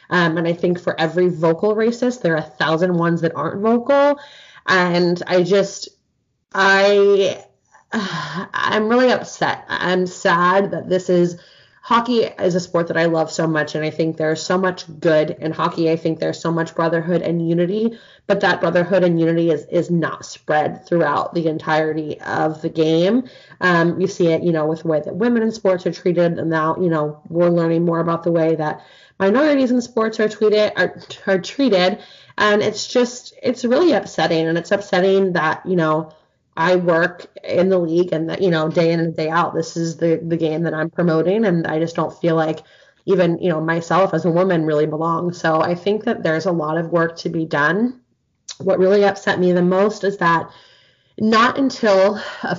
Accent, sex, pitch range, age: American, female, 165-195 Hz, 20-39